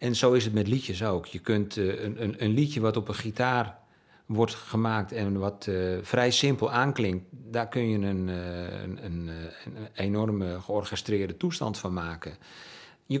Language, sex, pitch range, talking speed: Dutch, male, 95-115 Hz, 175 wpm